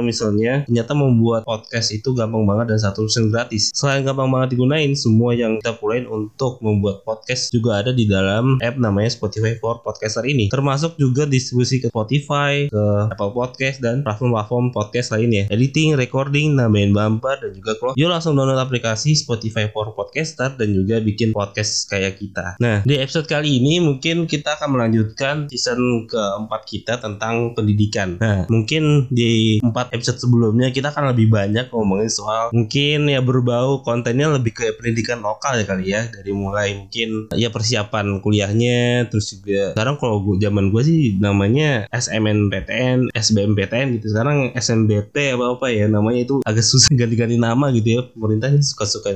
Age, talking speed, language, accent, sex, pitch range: 20-39, 160 wpm, Indonesian, native, male, 110-130 Hz